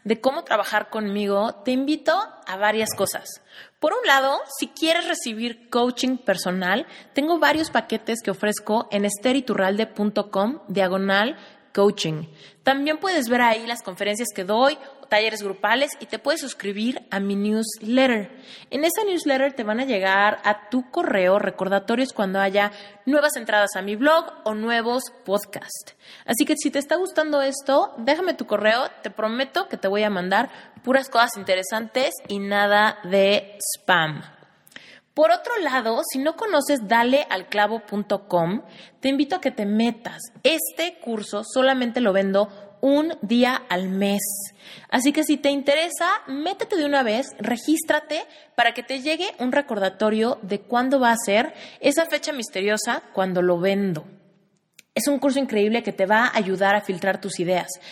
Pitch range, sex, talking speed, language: 200-280 Hz, female, 155 wpm, Spanish